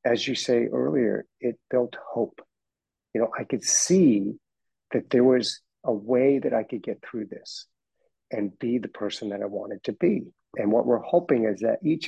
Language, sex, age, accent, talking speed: English, male, 50-69, American, 195 wpm